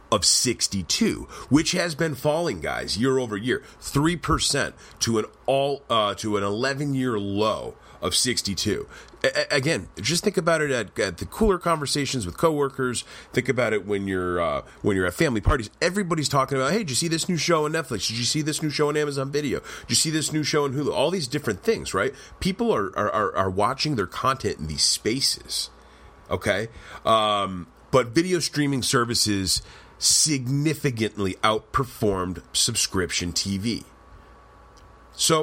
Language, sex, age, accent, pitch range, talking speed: English, male, 30-49, American, 95-140 Hz, 170 wpm